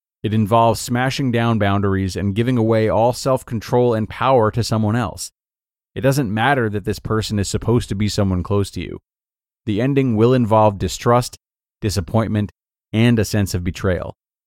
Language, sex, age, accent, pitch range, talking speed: English, male, 30-49, American, 95-125 Hz, 165 wpm